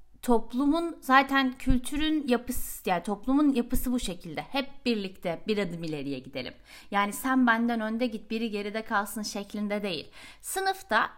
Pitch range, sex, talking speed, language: 210-280 Hz, female, 140 wpm, Turkish